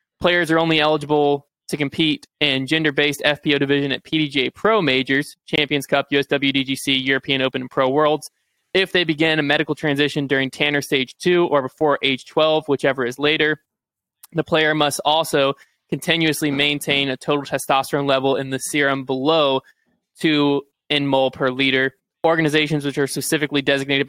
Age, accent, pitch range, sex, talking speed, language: 20-39, American, 135-155 Hz, male, 160 wpm, English